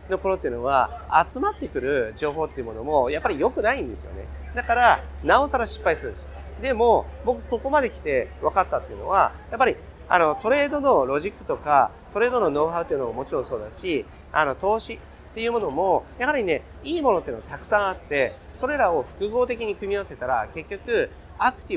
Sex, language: male, Japanese